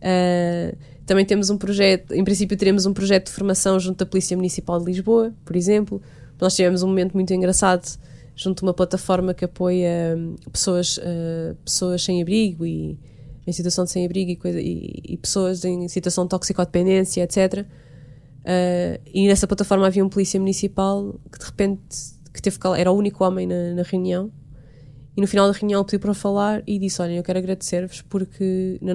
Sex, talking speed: female, 190 wpm